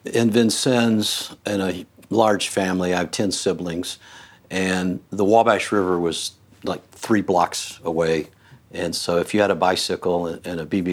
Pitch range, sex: 85-100 Hz, male